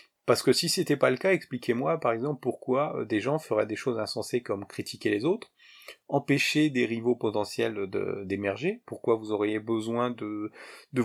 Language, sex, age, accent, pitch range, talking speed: French, male, 30-49, French, 110-140 Hz, 180 wpm